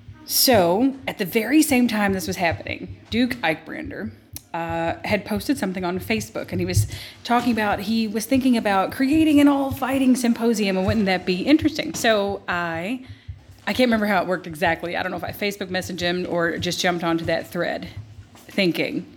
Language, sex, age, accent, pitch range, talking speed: English, female, 30-49, American, 165-210 Hz, 190 wpm